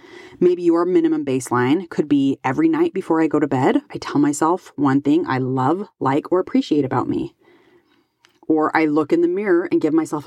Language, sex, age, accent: English, female, 30-49, American